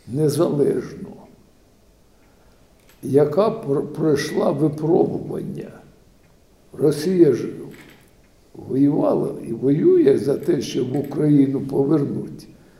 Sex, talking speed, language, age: male, 65 wpm, Ukrainian, 60-79